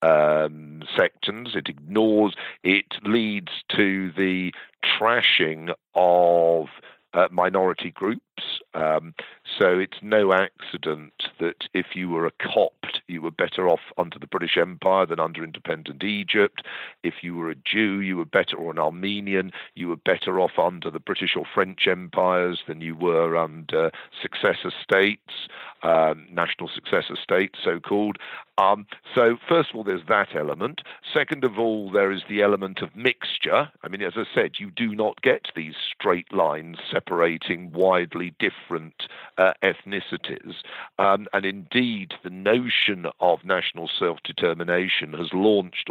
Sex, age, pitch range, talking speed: male, 50-69, 85-105 Hz, 145 wpm